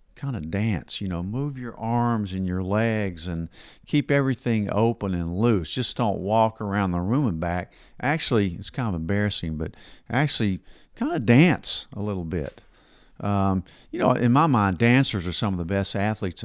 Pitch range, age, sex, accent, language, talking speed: 90-115 Hz, 50-69, male, American, English, 185 wpm